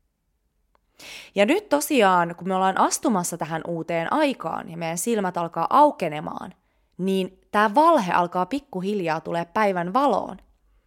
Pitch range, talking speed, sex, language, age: 160-230 Hz, 125 wpm, female, Finnish, 20-39